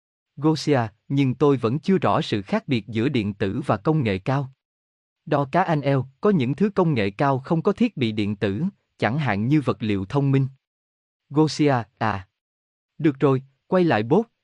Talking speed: 190 wpm